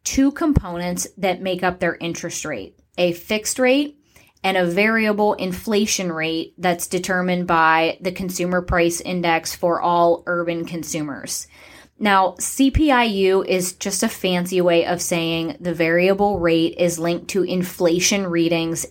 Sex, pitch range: female, 175-210 Hz